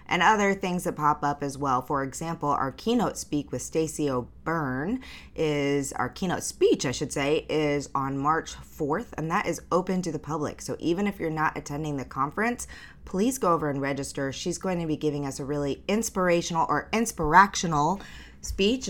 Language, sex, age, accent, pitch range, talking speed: English, female, 20-39, American, 145-180 Hz, 185 wpm